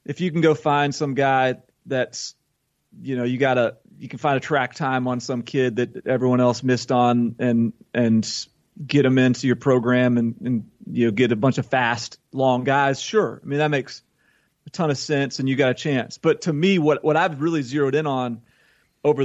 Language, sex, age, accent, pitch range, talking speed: English, male, 30-49, American, 125-150 Hz, 220 wpm